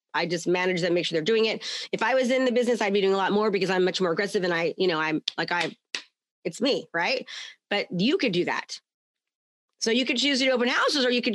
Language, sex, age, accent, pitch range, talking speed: English, female, 30-49, American, 185-240 Hz, 270 wpm